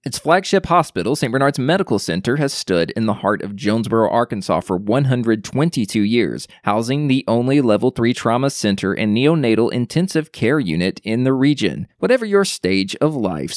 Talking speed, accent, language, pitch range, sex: 170 wpm, American, English, 110-170 Hz, male